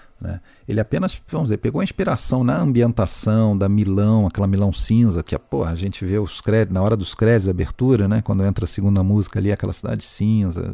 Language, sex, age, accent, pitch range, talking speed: Portuguese, male, 40-59, Brazilian, 95-115 Hz, 220 wpm